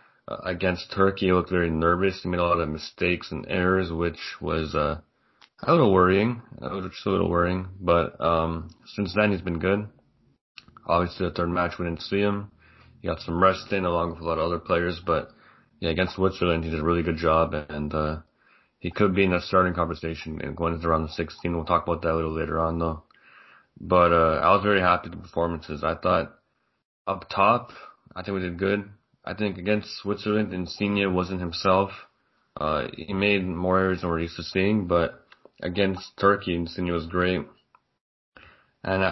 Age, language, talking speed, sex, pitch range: 20-39, English, 195 wpm, male, 85-95 Hz